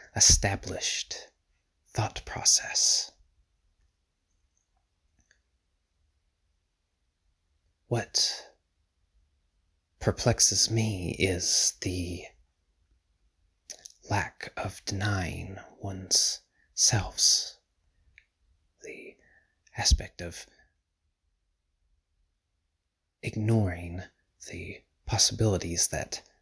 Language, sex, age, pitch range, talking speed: English, male, 30-49, 75-95 Hz, 45 wpm